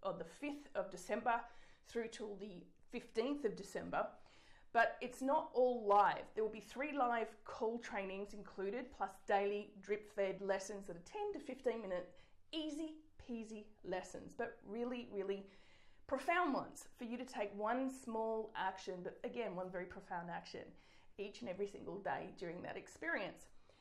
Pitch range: 200-255 Hz